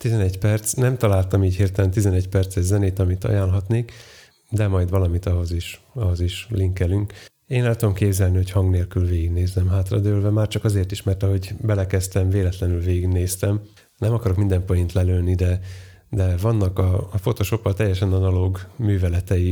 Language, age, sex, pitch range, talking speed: Hungarian, 30-49, male, 90-105 Hz, 155 wpm